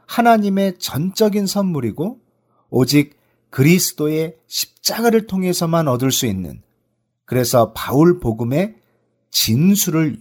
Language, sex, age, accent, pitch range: Korean, male, 40-59, native, 115-180 Hz